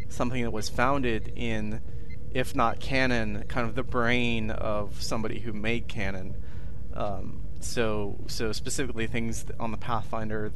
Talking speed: 140 wpm